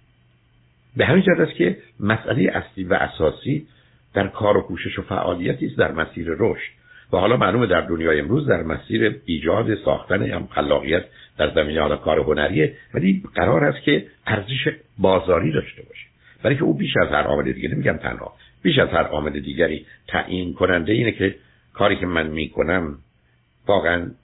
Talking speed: 165 wpm